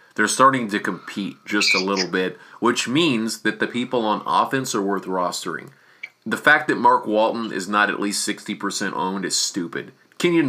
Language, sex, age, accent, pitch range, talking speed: English, male, 30-49, American, 105-130 Hz, 185 wpm